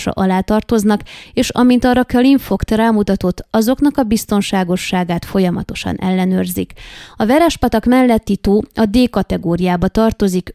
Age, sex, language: 20-39, female, Hungarian